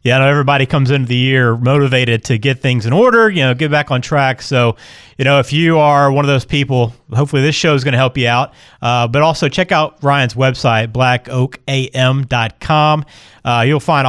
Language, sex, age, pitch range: English, male, 30-49, 120-150 Hz